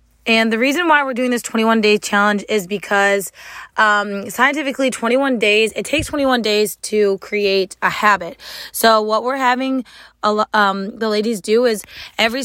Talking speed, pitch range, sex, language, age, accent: 175 wpm, 205-240 Hz, female, English, 20-39, American